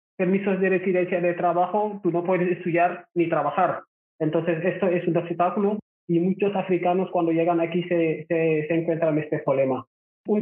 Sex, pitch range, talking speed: male, 175-210 Hz, 175 wpm